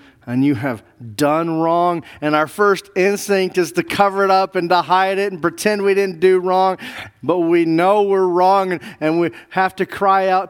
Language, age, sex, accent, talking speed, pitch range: English, 40-59, male, American, 200 wpm, 125-195 Hz